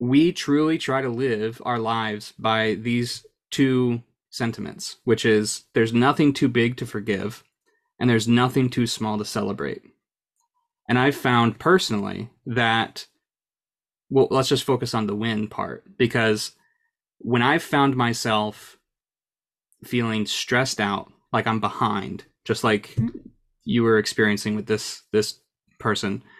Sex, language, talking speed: male, English, 135 wpm